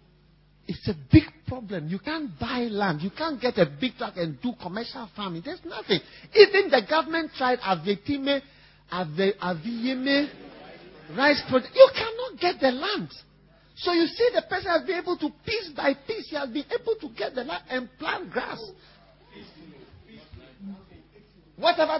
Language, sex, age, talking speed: English, male, 50-69, 160 wpm